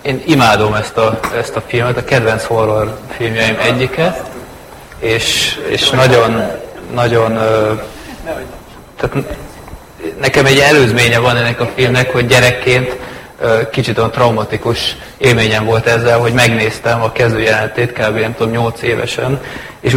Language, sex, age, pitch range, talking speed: Hungarian, male, 30-49, 110-120 Hz, 120 wpm